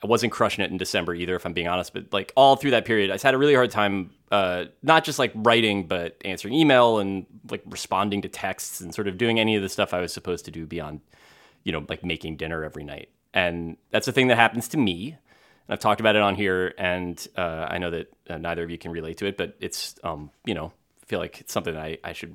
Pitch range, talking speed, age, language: 90-120 Hz, 265 wpm, 30-49, English